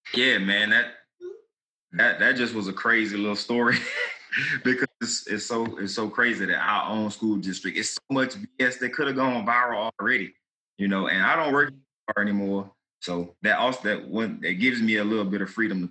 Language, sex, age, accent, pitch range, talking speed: English, male, 20-39, American, 95-110 Hz, 200 wpm